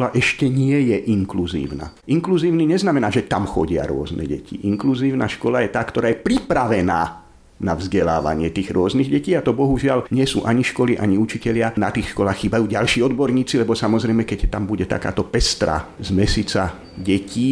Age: 50-69